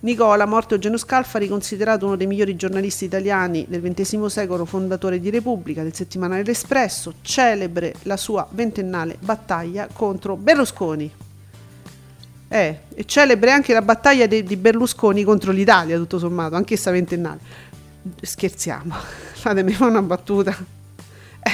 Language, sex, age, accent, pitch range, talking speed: Italian, female, 40-59, native, 185-230 Hz, 135 wpm